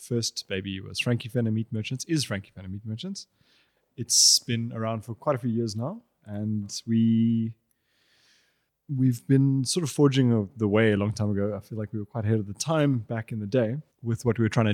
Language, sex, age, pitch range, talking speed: English, male, 20-39, 105-130 Hz, 220 wpm